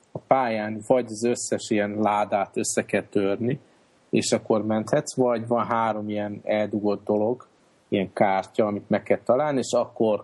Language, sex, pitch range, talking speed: Hungarian, male, 100-110 Hz, 160 wpm